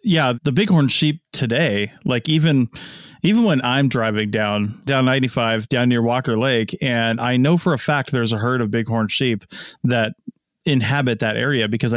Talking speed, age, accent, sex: 175 wpm, 30-49, American, male